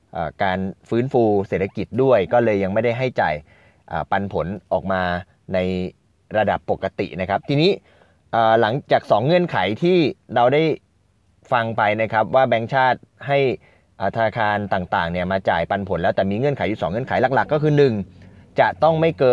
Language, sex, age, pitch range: Thai, male, 20-39, 95-120 Hz